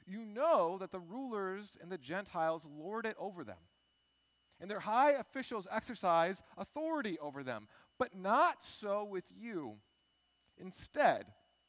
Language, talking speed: English, 135 wpm